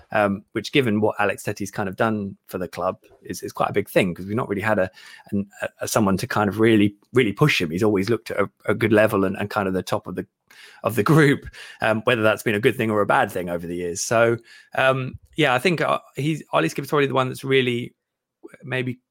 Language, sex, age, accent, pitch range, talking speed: English, male, 20-39, British, 105-125 Hz, 250 wpm